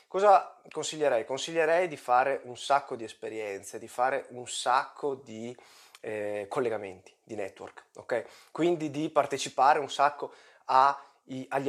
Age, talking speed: 20-39, 135 wpm